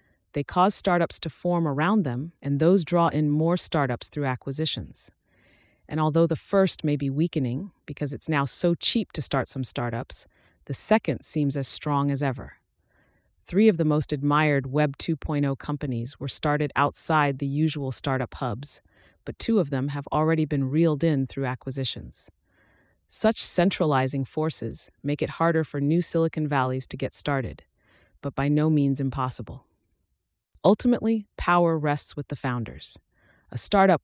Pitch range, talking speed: 135-160 Hz, 160 wpm